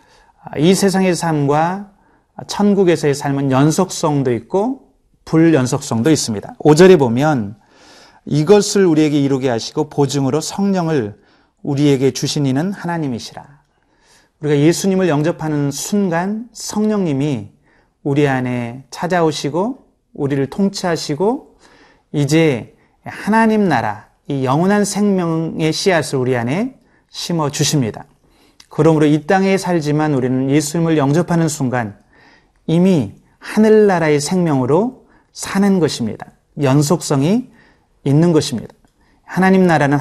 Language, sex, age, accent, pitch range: Korean, male, 30-49, native, 140-185 Hz